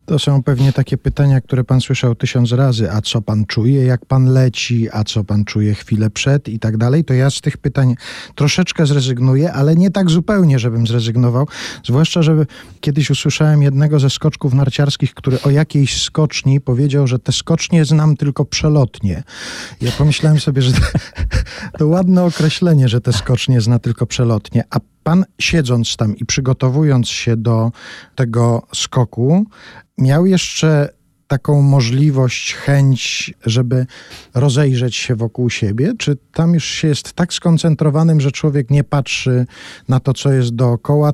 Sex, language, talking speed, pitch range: male, Polish, 155 wpm, 120-150 Hz